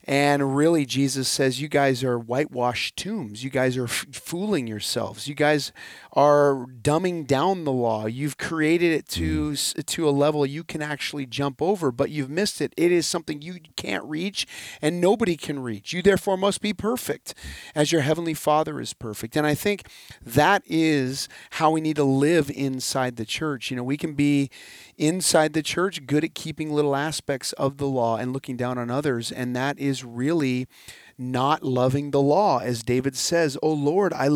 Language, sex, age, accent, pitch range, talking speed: English, male, 30-49, American, 135-175 Hz, 185 wpm